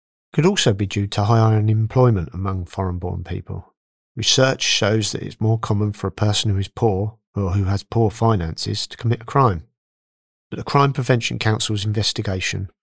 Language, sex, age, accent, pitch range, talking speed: English, male, 40-59, British, 95-115 Hz, 185 wpm